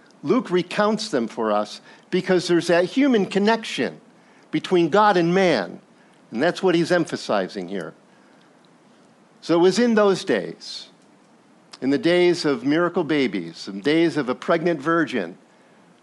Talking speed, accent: 145 wpm, American